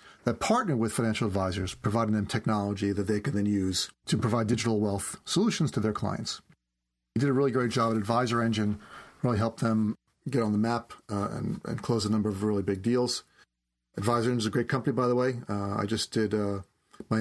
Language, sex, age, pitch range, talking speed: English, male, 40-59, 105-130 Hz, 215 wpm